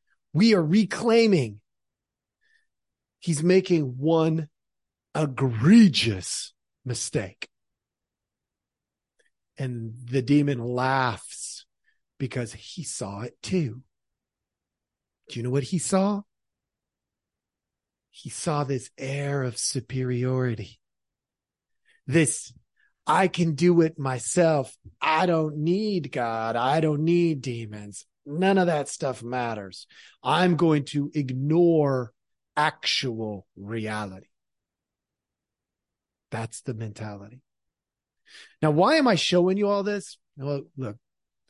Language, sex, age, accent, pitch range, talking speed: English, male, 40-59, American, 120-175 Hz, 95 wpm